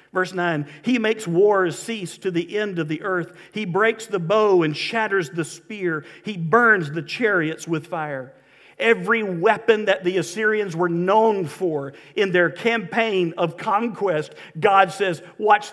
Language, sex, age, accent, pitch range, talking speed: English, male, 50-69, American, 165-220 Hz, 160 wpm